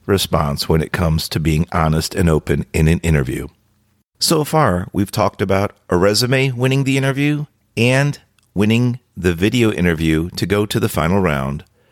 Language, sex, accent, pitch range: English, male, American, 90-120 Hz